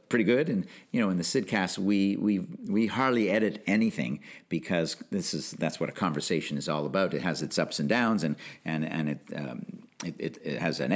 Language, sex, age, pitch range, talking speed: English, male, 50-69, 80-115 Hz, 215 wpm